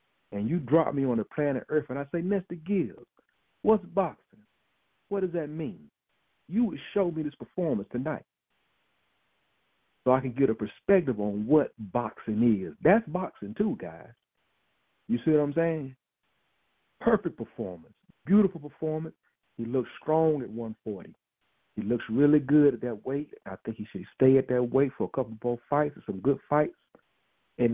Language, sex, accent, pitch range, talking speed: English, male, American, 125-170 Hz, 170 wpm